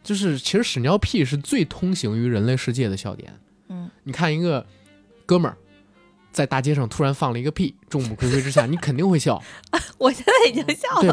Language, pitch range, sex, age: Chinese, 110-165 Hz, male, 20-39